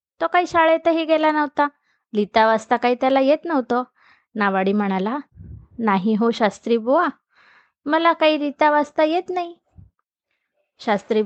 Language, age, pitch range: Marathi, 20-39, 230-320 Hz